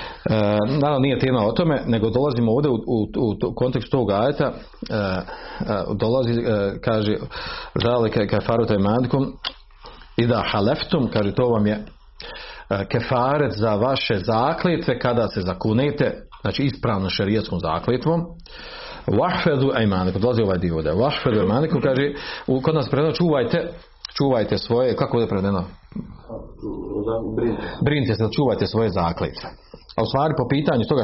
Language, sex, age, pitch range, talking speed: Croatian, male, 40-59, 110-150 Hz, 130 wpm